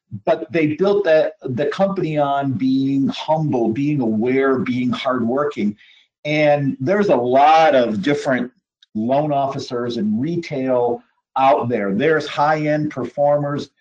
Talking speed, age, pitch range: 125 wpm, 50-69, 130-155 Hz